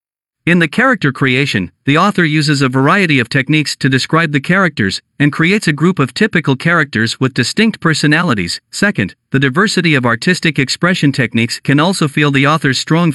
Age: 50-69